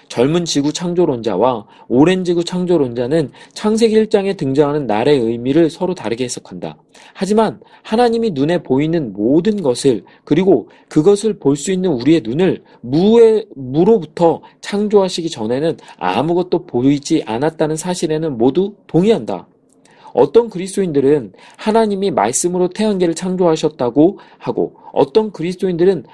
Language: Korean